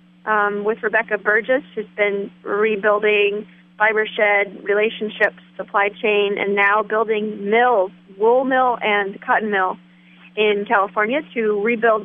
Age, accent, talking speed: 30-49, American, 125 wpm